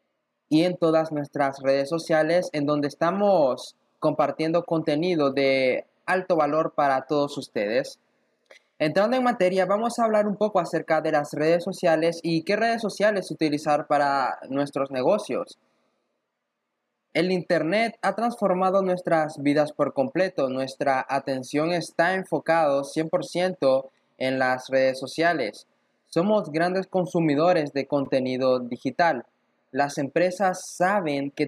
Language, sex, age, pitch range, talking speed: Spanish, male, 20-39, 140-175 Hz, 125 wpm